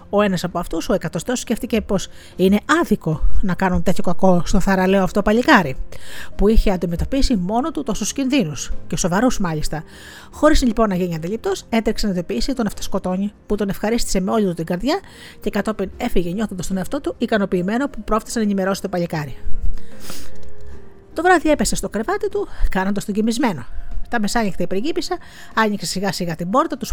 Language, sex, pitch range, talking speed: Greek, female, 185-245 Hz, 170 wpm